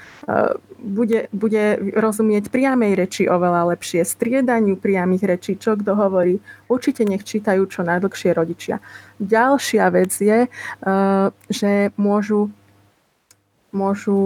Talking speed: 105 wpm